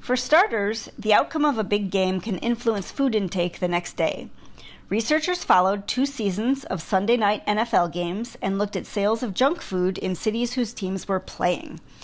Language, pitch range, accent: English, 190-255 Hz, American